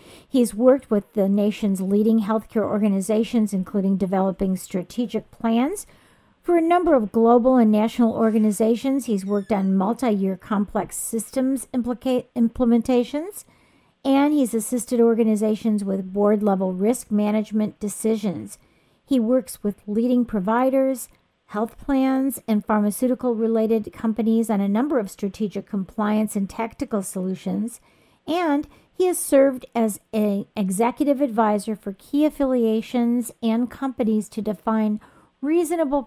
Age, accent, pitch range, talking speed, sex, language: 50-69, American, 205-245 Hz, 125 wpm, female, English